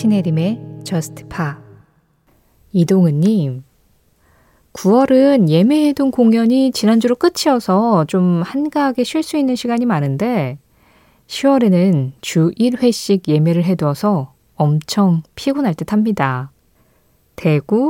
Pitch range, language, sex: 160-250 Hz, Korean, female